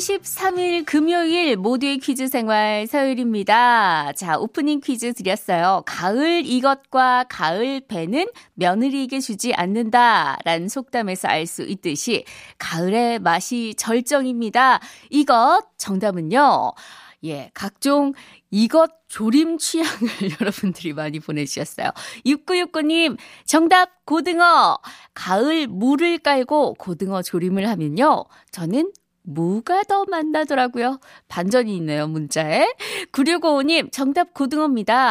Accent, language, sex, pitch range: native, Korean, female, 195-310 Hz